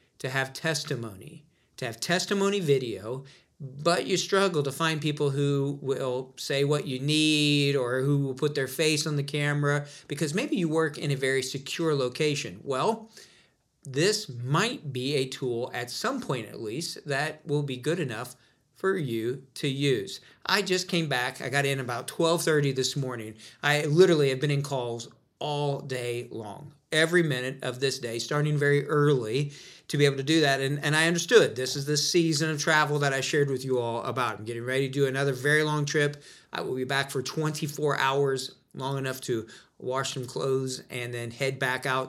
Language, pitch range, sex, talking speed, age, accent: English, 130-155 Hz, male, 190 wpm, 40-59, American